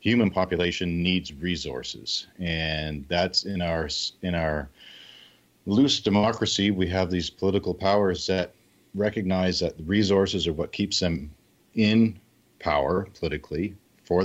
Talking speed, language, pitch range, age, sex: 125 wpm, English, 75-90 Hz, 40-59, male